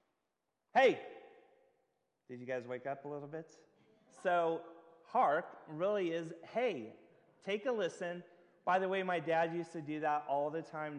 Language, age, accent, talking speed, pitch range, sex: English, 30-49, American, 160 wpm, 130-175 Hz, male